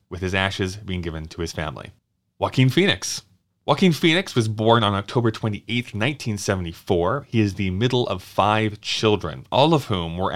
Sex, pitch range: male, 90-115 Hz